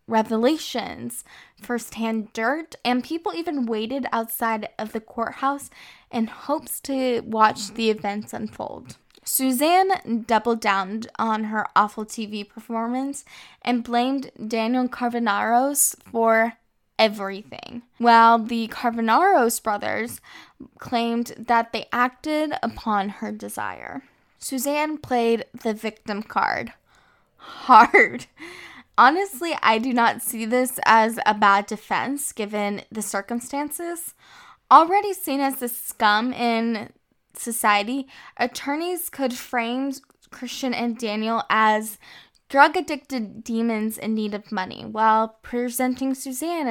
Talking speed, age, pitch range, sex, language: 110 wpm, 10-29, 220-260 Hz, female, English